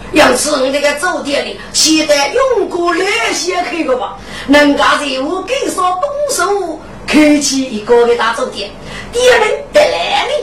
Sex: female